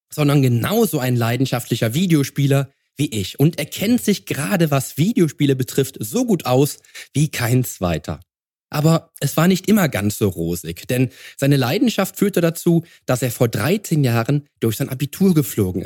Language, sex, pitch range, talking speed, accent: German, male, 120-165 Hz, 160 wpm, German